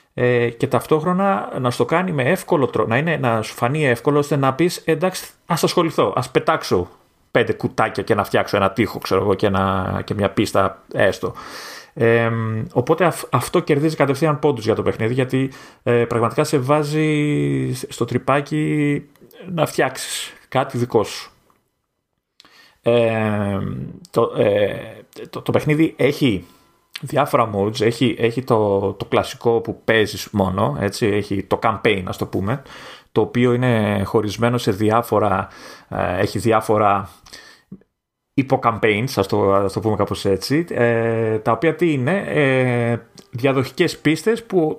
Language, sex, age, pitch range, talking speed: Greek, male, 30-49, 110-145 Hz, 140 wpm